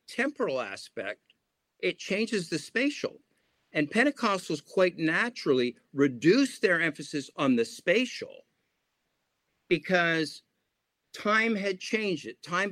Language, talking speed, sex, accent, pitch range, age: English, 105 wpm, male, American, 125-165 Hz, 50-69